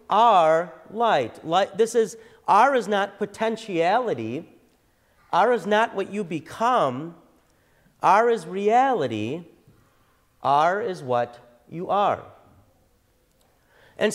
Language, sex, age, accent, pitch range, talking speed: English, male, 40-59, American, 135-210 Hz, 100 wpm